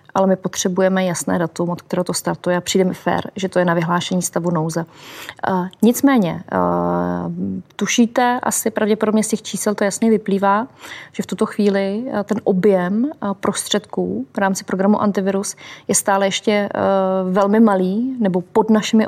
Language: Czech